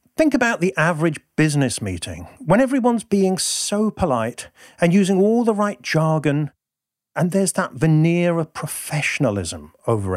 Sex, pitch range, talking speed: male, 110-175 Hz, 140 wpm